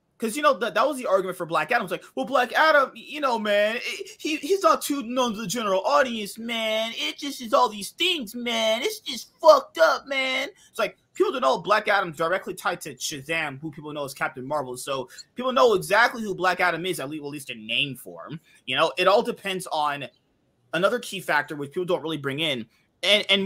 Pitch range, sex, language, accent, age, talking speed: 155-230 Hz, male, English, American, 30-49, 235 wpm